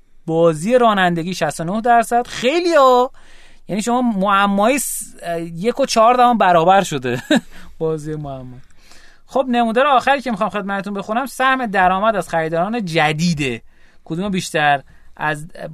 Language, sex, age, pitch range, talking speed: Persian, male, 30-49, 150-215 Hz, 120 wpm